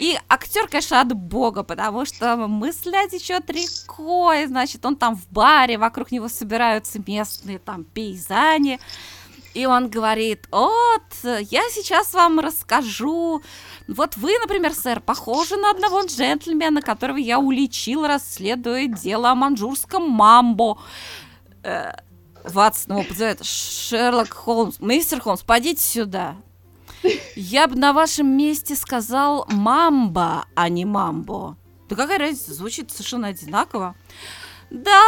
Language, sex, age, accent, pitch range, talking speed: Russian, female, 20-39, native, 215-320 Hz, 125 wpm